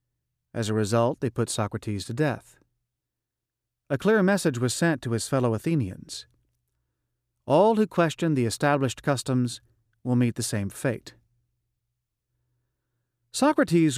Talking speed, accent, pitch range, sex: 125 wpm, American, 115-140 Hz, male